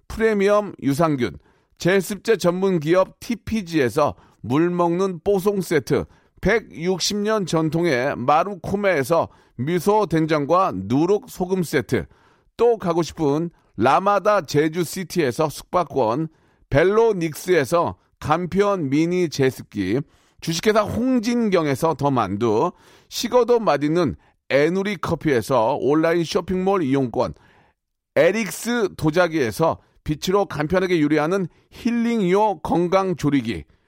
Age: 40-59